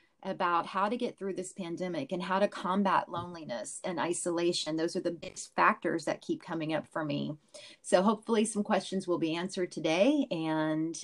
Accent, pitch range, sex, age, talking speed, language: American, 175-210 Hz, female, 30-49, 185 wpm, English